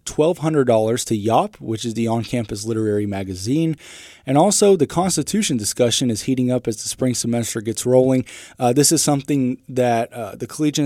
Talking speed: 170 wpm